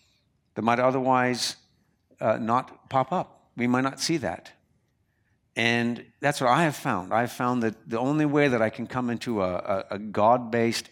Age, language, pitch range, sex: 60-79, English, 100-130 Hz, male